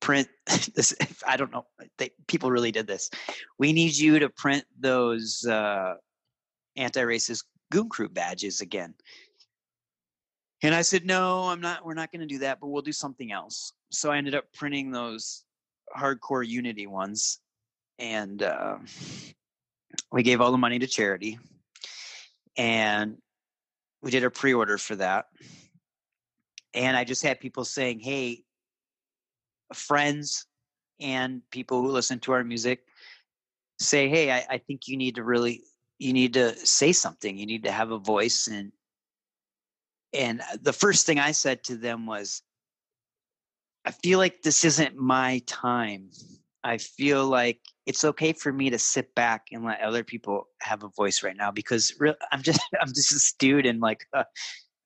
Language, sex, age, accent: English, male, 30-49, American